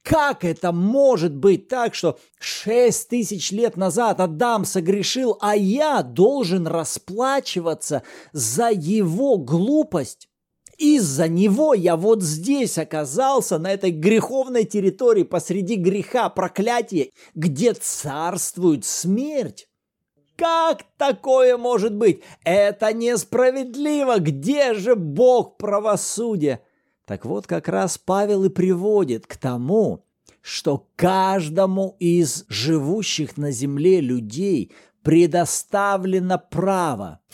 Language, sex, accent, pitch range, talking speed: Russian, male, native, 160-220 Hz, 100 wpm